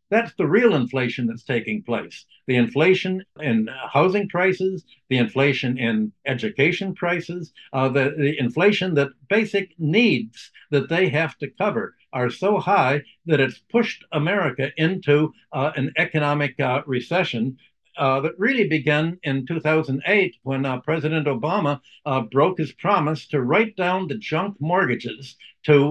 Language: English